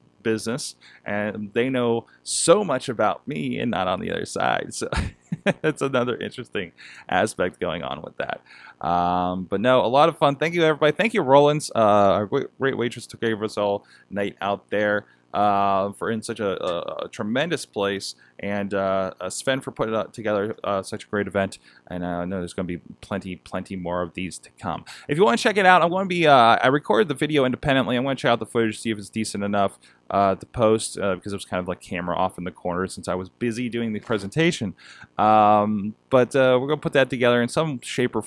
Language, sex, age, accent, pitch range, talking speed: English, male, 20-39, American, 95-135 Hz, 235 wpm